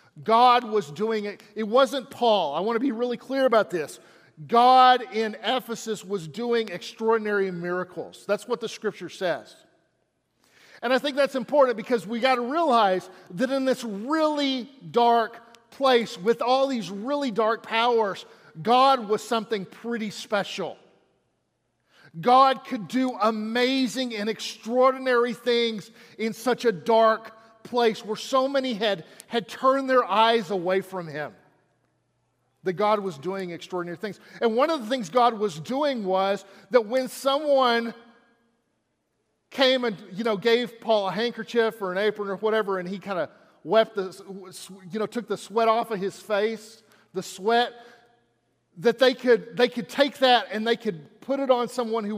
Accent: American